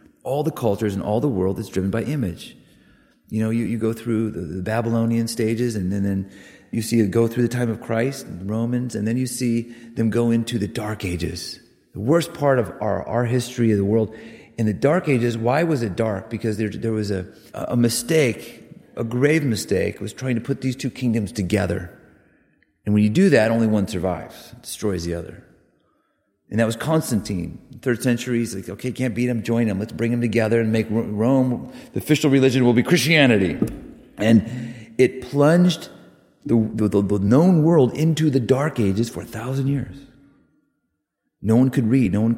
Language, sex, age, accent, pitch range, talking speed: English, male, 40-59, American, 105-130 Hz, 200 wpm